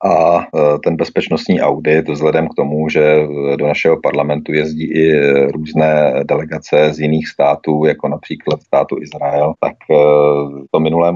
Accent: native